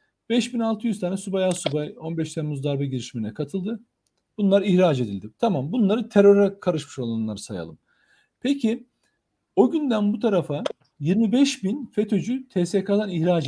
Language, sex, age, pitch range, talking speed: Turkish, male, 40-59, 145-220 Hz, 125 wpm